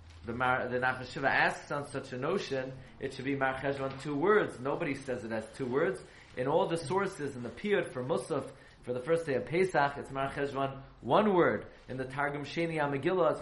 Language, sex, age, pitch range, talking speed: English, male, 30-49, 135-210 Hz, 200 wpm